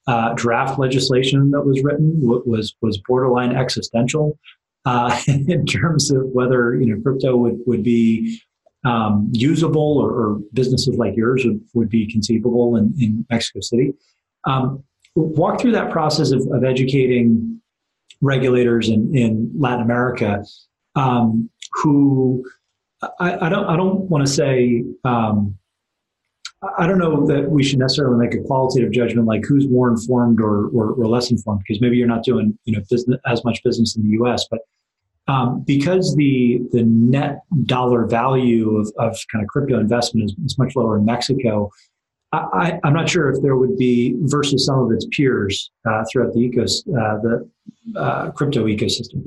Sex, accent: male, American